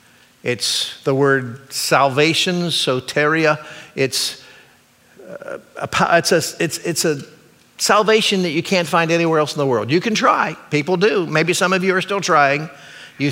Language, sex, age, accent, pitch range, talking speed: English, male, 50-69, American, 145-185 Hz, 140 wpm